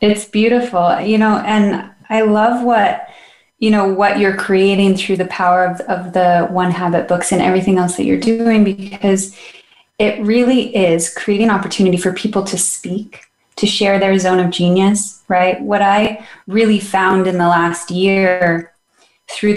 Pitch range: 175-195 Hz